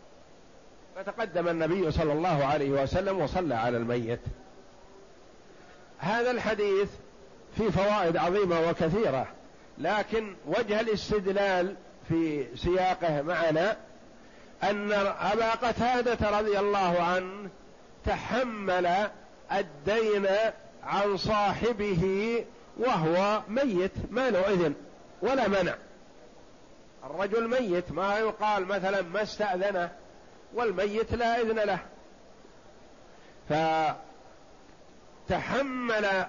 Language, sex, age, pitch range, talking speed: Arabic, male, 50-69, 175-210 Hz, 85 wpm